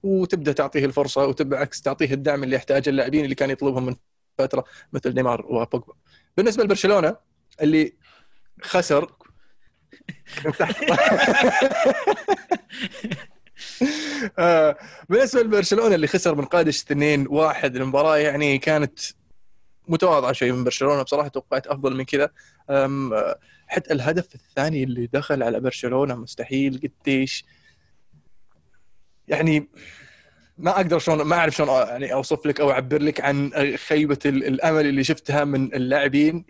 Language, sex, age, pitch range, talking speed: Arabic, male, 20-39, 135-155 Hz, 115 wpm